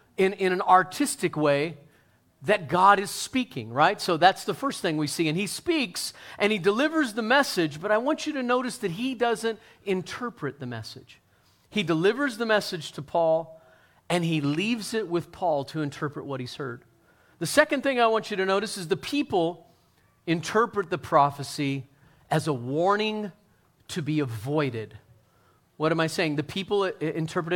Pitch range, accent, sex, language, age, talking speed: 150-210 Hz, American, male, English, 40-59, 175 wpm